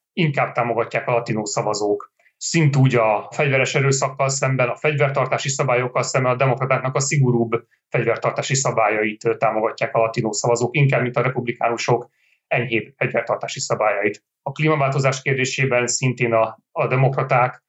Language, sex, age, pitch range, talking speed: Hungarian, male, 30-49, 120-145 Hz, 130 wpm